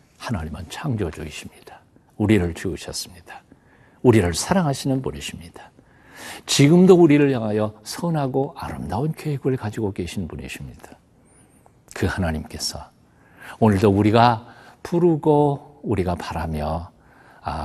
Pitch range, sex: 85-140 Hz, male